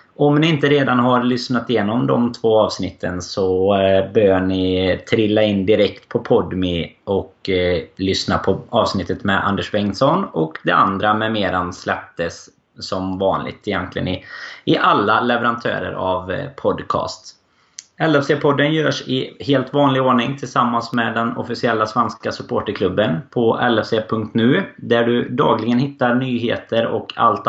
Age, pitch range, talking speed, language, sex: 20-39, 100-130 Hz, 135 wpm, Swedish, male